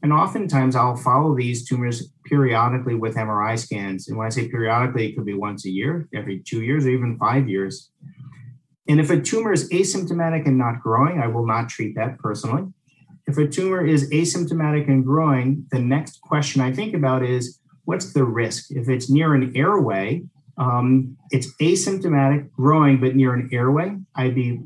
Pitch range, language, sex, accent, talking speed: 125-150 Hz, English, male, American, 180 wpm